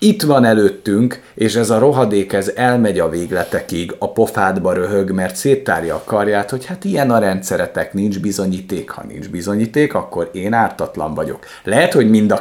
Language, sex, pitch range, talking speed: Hungarian, male, 95-120 Hz, 175 wpm